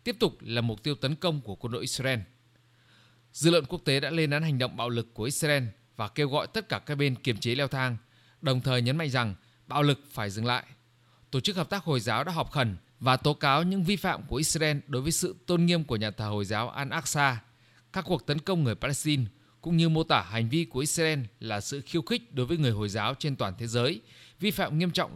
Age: 20-39